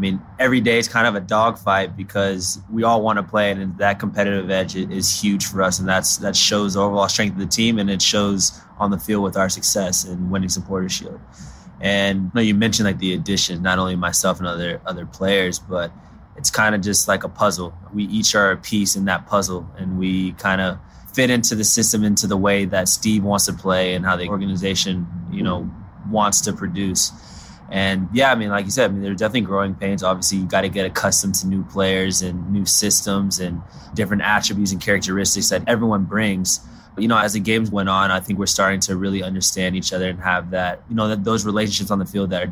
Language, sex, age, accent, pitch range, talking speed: English, male, 20-39, American, 95-105 Hz, 235 wpm